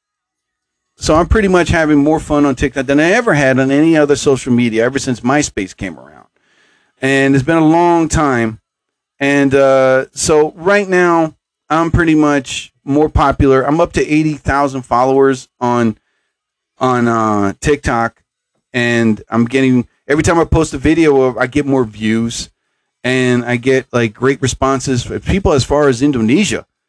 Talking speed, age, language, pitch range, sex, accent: 165 wpm, 40-59, English, 130-175 Hz, male, American